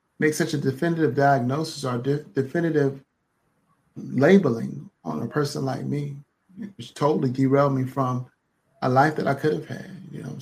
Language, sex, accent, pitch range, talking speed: English, male, American, 135-155 Hz, 165 wpm